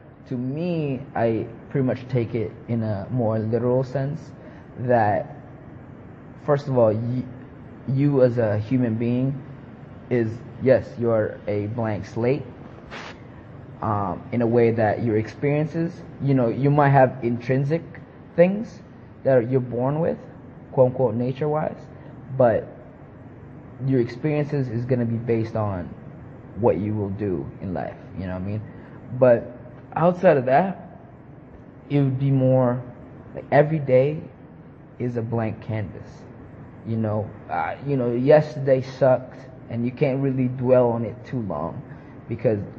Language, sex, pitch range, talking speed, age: English, male, 115-135 Hz, 140 wpm, 20-39